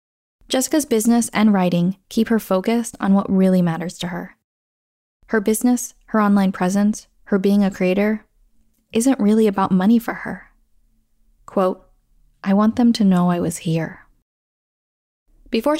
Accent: American